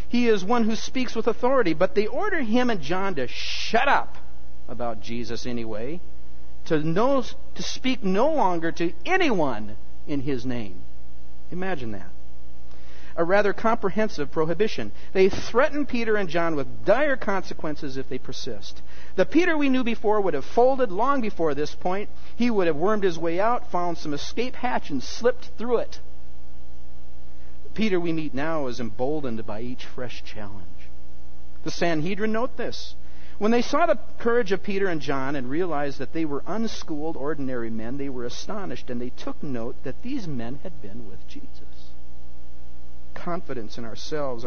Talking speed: 165 wpm